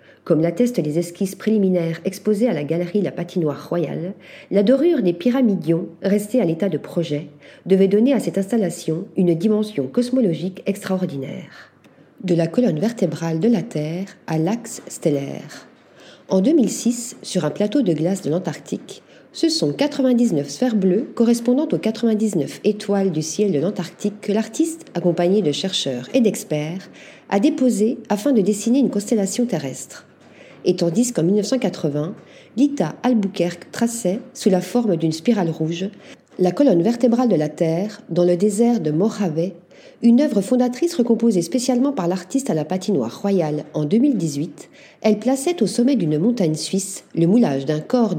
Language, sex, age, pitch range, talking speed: Spanish, female, 40-59, 170-235 Hz, 155 wpm